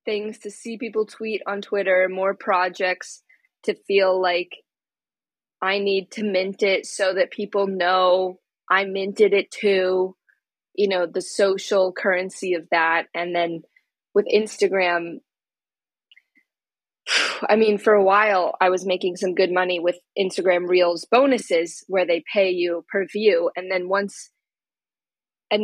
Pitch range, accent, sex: 175-205 Hz, American, female